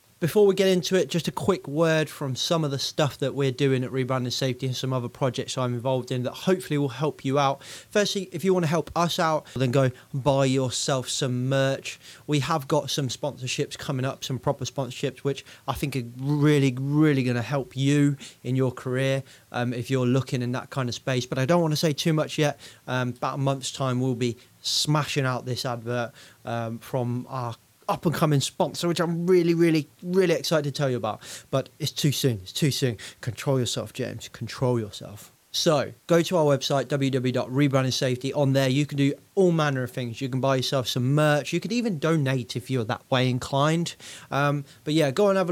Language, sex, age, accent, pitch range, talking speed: English, male, 30-49, British, 125-150 Hz, 215 wpm